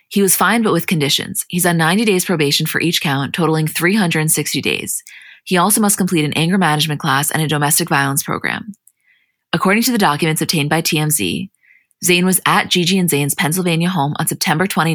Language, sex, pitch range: English, female, 155-185 Hz